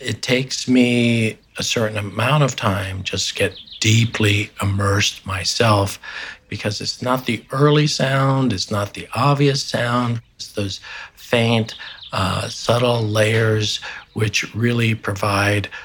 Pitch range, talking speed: 95-110 Hz, 130 wpm